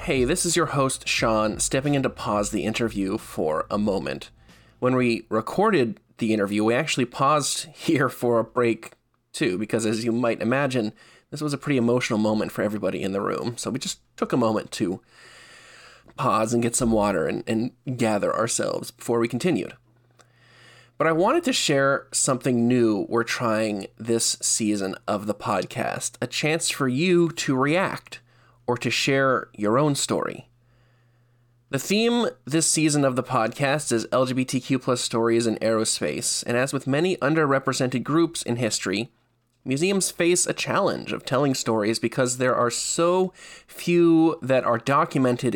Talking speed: 165 wpm